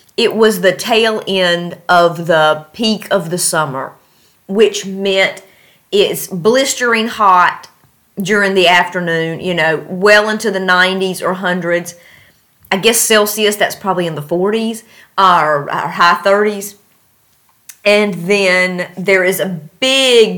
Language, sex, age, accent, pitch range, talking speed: English, female, 30-49, American, 180-220 Hz, 130 wpm